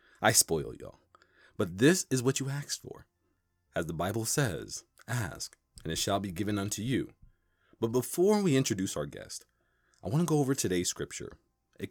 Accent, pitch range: American, 95-145 Hz